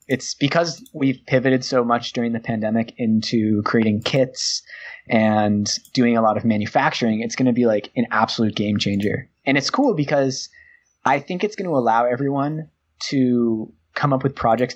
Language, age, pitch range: English, 20-39, 110-130 Hz